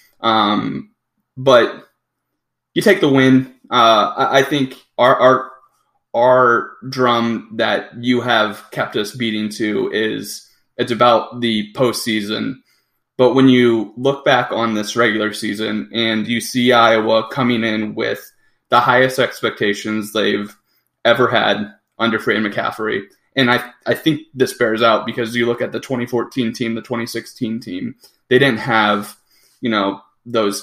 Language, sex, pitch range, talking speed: English, male, 110-125 Hz, 150 wpm